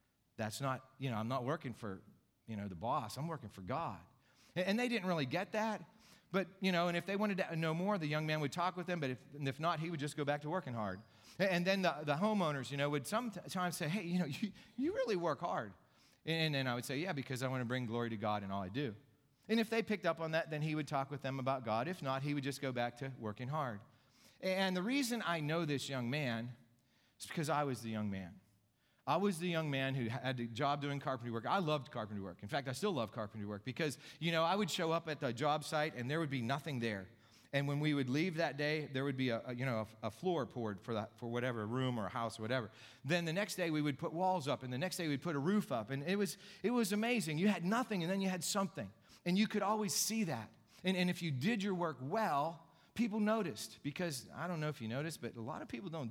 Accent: American